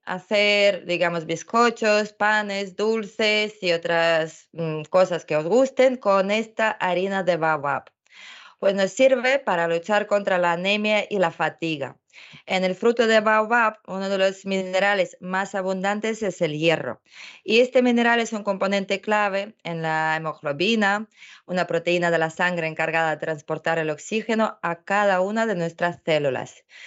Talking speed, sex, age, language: 150 wpm, female, 20-39, Spanish